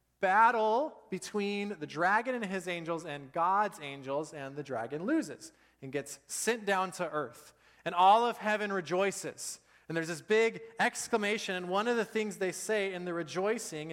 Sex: male